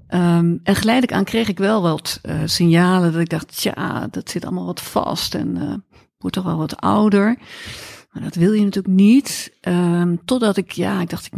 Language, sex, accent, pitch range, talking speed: Dutch, female, Dutch, 155-195 Hz, 205 wpm